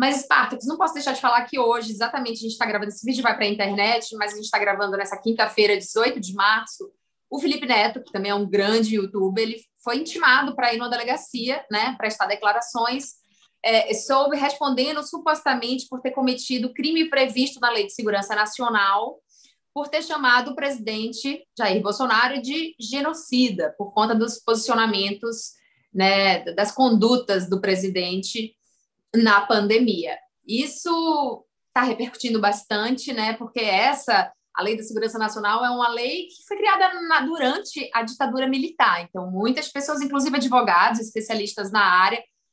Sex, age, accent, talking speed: female, 20-39, Brazilian, 160 wpm